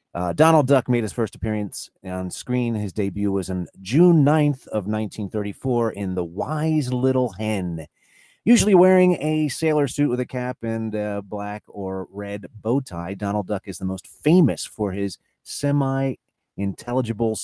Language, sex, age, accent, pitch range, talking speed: English, male, 30-49, American, 95-130 Hz, 160 wpm